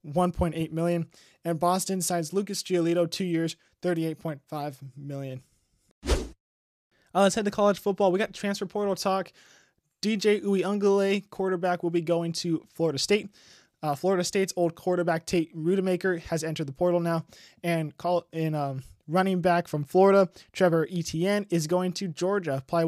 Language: English